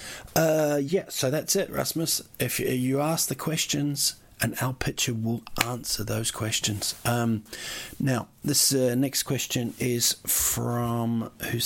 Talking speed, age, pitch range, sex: 140 wpm, 40-59, 105-125 Hz, male